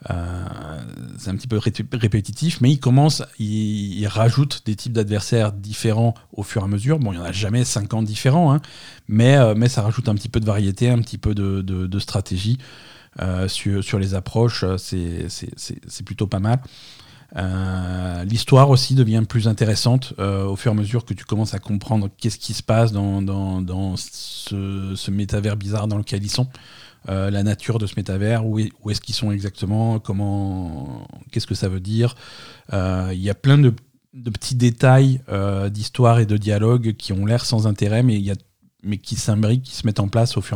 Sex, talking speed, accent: male, 210 wpm, French